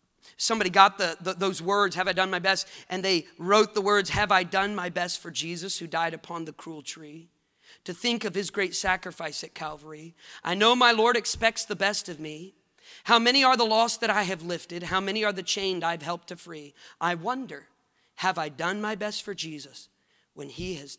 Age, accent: 40-59, American